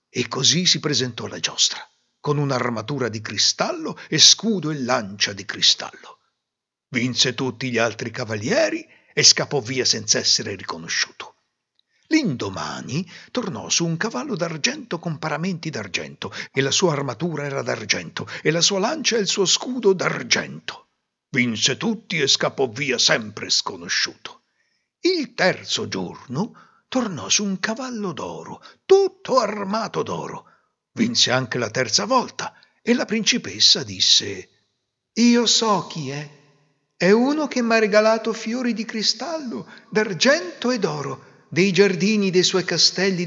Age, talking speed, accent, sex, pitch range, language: 60-79, 135 wpm, native, male, 135-225 Hz, Italian